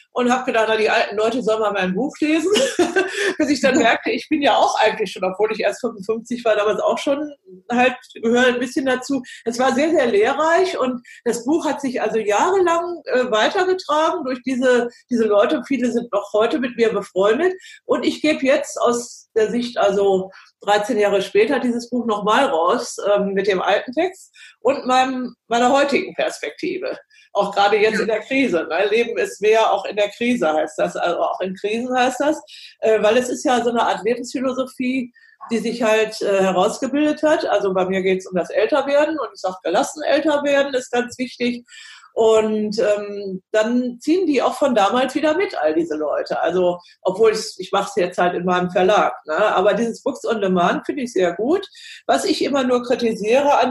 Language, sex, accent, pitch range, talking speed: German, female, German, 215-295 Hz, 195 wpm